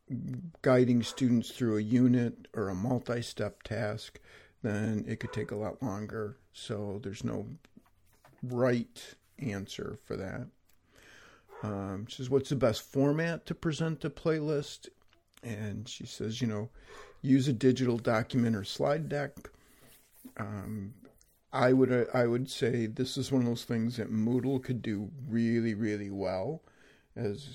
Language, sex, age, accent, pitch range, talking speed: English, male, 50-69, American, 110-130 Hz, 140 wpm